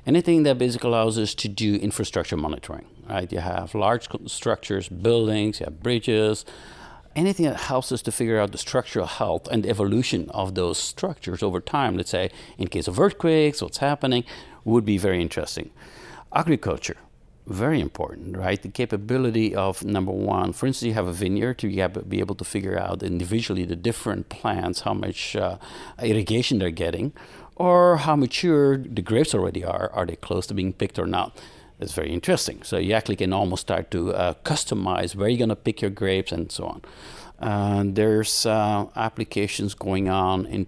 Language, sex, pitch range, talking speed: English, male, 95-120 Hz, 180 wpm